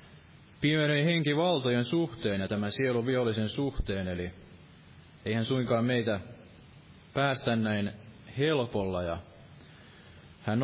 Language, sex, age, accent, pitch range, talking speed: Finnish, male, 30-49, native, 105-140 Hz, 95 wpm